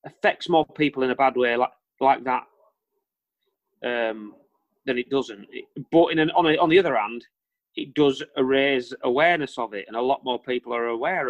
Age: 30-49